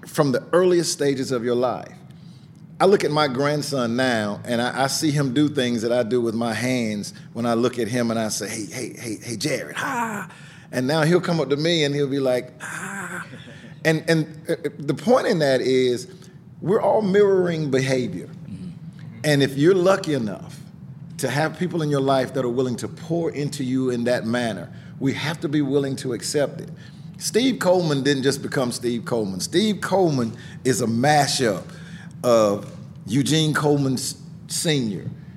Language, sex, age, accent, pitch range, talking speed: English, male, 50-69, American, 125-160 Hz, 185 wpm